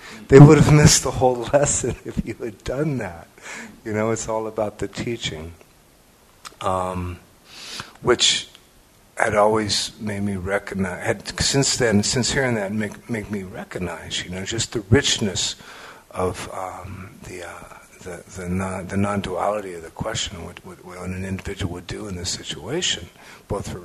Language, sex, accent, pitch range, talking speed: English, male, American, 95-130 Hz, 160 wpm